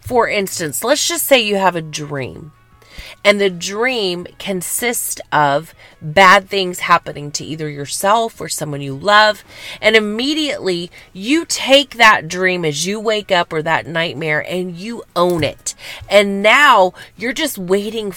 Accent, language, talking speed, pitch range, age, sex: American, English, 150 wpm, 165-230 Hz, 30-49, female